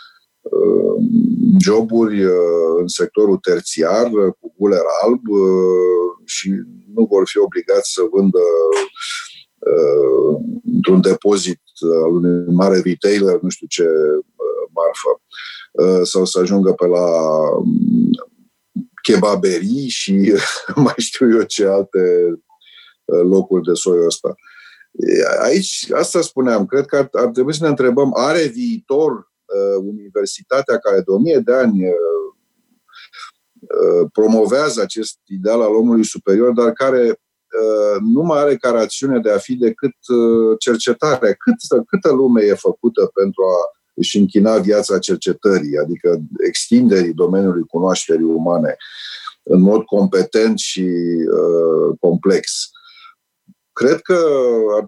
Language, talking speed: Romanian, 110 wpm